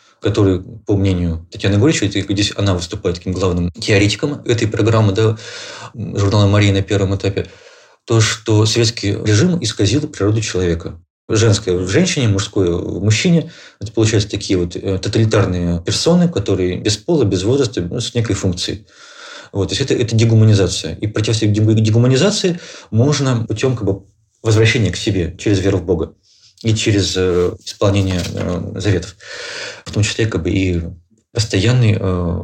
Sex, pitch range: male, 95-110 Hz